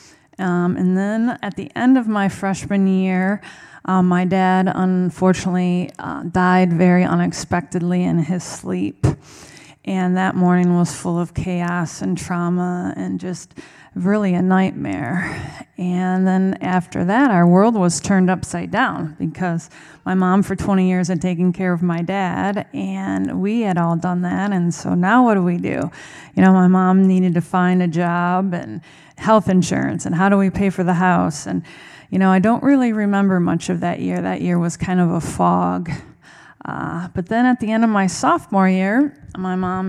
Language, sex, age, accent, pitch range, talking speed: English, female, 20-39, American, 175-195 Hz, 180 wpm